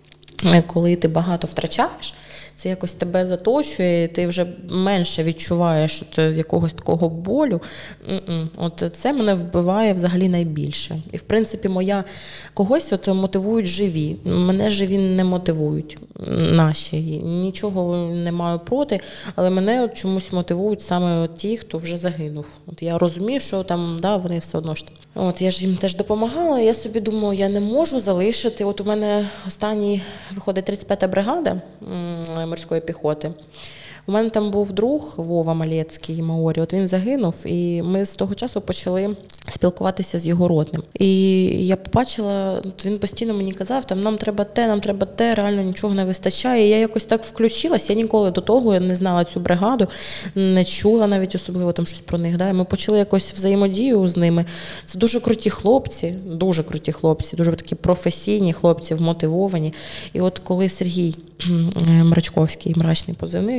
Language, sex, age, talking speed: Ukrainian, female, 20-39, 160 wpm